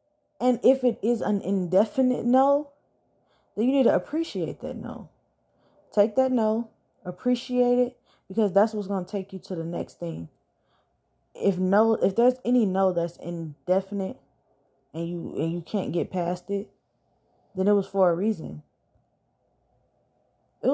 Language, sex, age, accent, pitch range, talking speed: English, female, 10-29, American, 180-245 Hz, 155 wpm